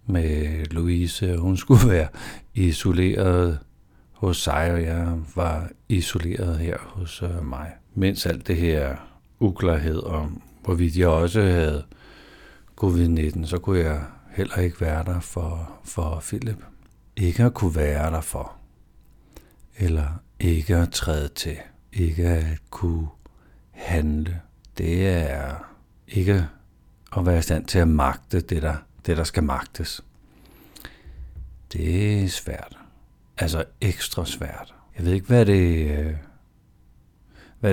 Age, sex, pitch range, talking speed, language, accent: 60-79, male, 80-95 Hz, 125 wpm, Danish, native